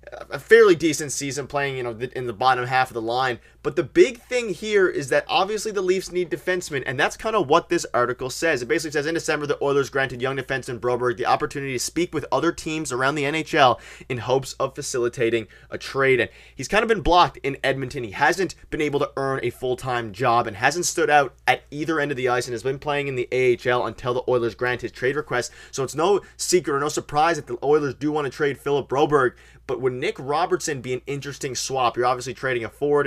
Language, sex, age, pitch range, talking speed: English, male, 20-39, 125-155 Hz, 240 wpm